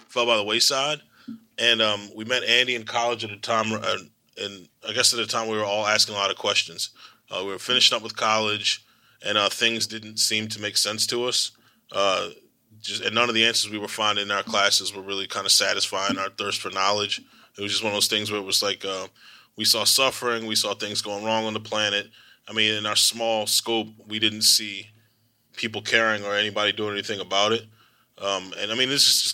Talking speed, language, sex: 235 wpm, English, male